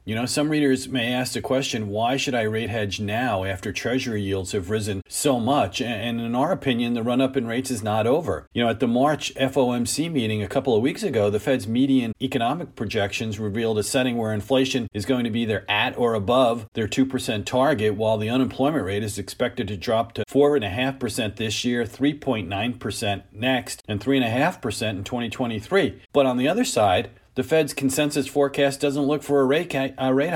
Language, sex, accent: English, male, American